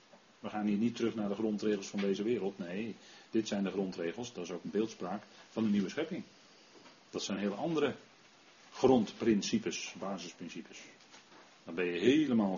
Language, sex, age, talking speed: Dutch, male, 40-59, 165 wpm